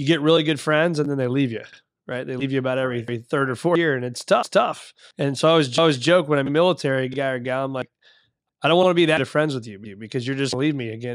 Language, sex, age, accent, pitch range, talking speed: English, male, 30-49, American, 130-160 Hz, 310 wpm